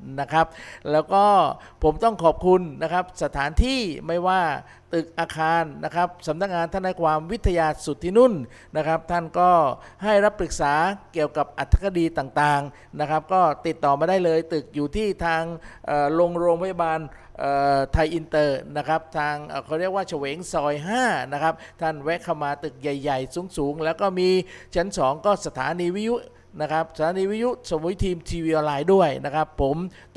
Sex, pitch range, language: male, 155-190 Hz, Thai